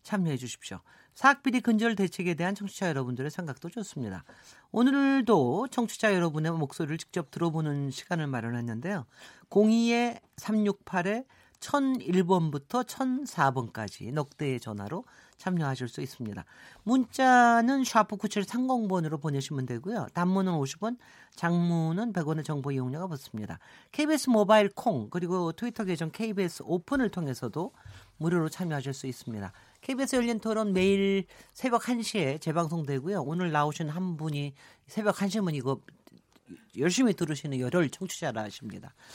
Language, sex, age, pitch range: Korean, male, 40-59, 140-215 Hz